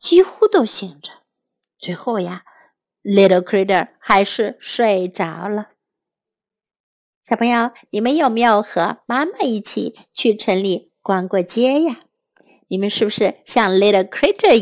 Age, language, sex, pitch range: 50-69, Chinese, female, 205-290 Hz